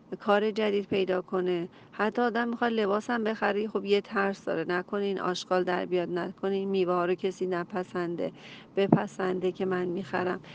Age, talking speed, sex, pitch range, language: 40-59, 150 wpm, female, 180-210 Hz, Persian